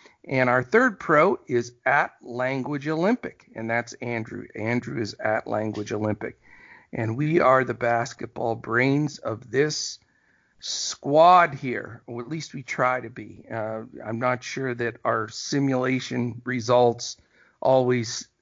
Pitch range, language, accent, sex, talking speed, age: 120-150 Hz, English, American, male, 135 wpm, 50-69